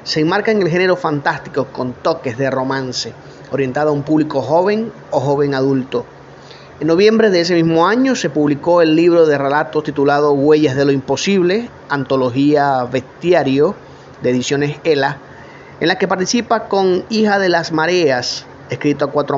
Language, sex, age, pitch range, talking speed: Spanish, male, 30-49, 135-170 Hz, 160 wpm